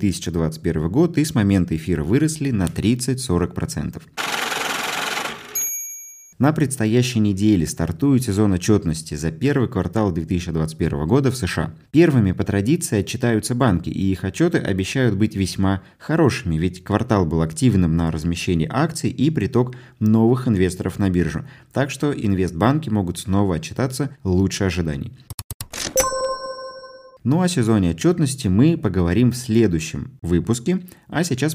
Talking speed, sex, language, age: 125 wpm, male, Russian, 20-39